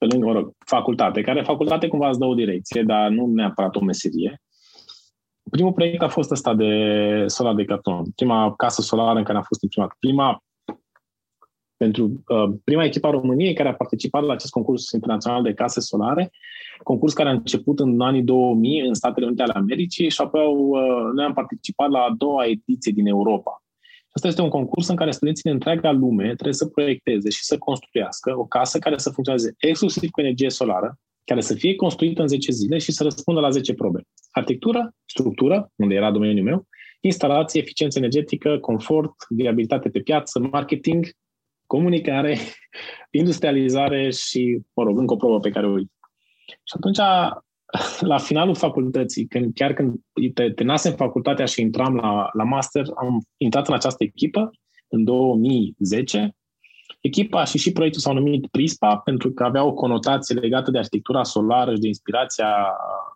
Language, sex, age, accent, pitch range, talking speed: Romanian, male, 20-39, native, 120-155 Hz, 175 wpm